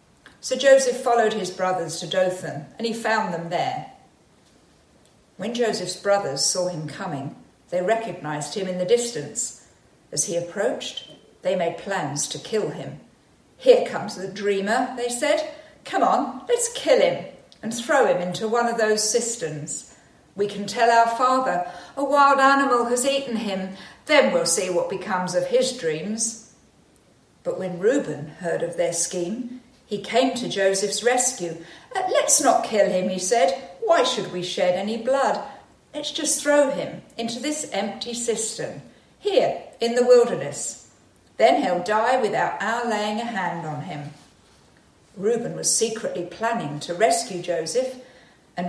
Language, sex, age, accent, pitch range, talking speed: English, female, 50-69, British, 180-245 Hz, 155 wpm